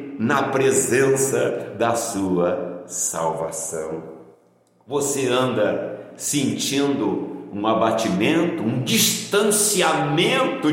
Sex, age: male, 60-79